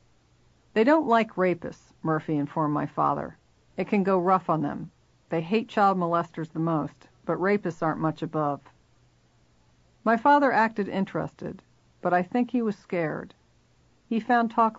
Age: 50-69